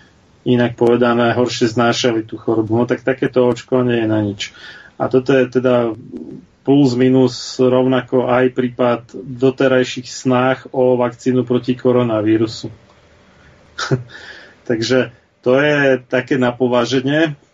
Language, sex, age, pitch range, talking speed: Slovak, male, 30-49, 120-130 Hz, 115 wpm